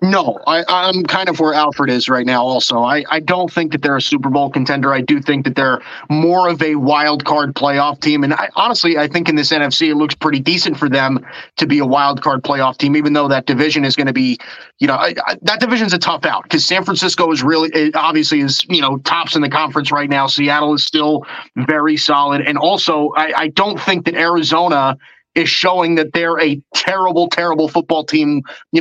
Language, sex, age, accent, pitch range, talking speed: English, male, 30-49, American, 145-165 Hz, 230 wpm